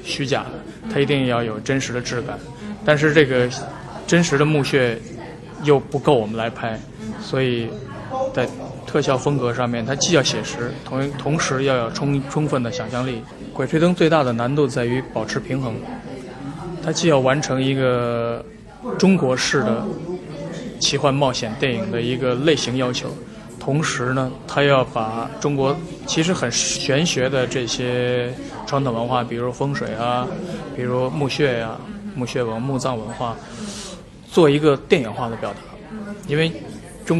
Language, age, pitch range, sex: Chinese, 20-39, 120-145 Hz, male